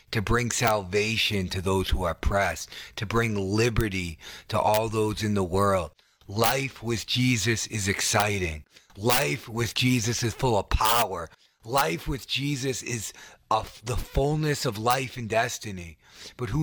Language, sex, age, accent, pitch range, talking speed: English, male, 30-49, American, 115-175 Hz, 150 wpm